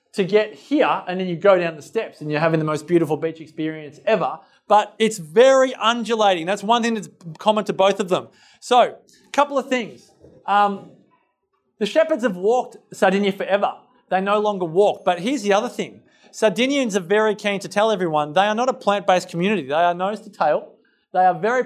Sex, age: male, 30-49